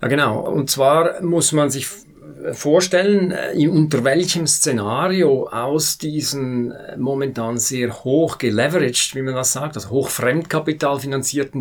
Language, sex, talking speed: German, male, 125 wpm